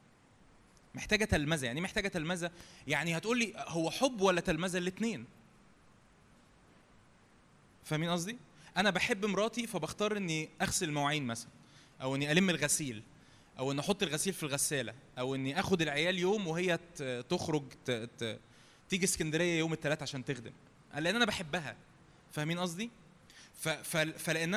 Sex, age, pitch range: male, 20-39, 150-205 Hz